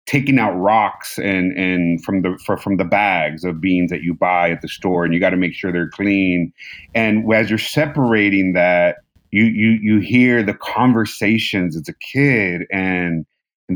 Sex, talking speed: male, 185 wpm